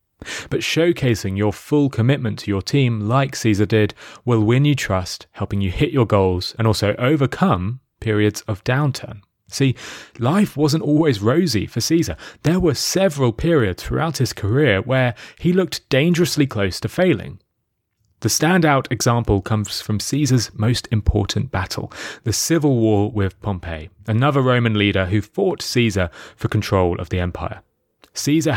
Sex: male